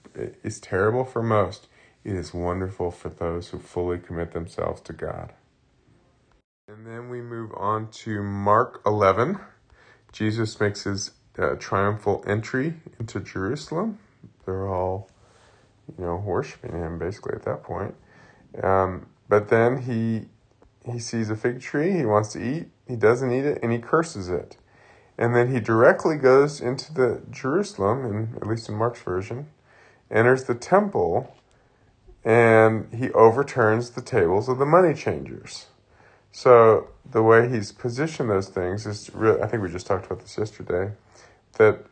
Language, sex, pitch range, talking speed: English, male, 100-120 Hz, 150 wpm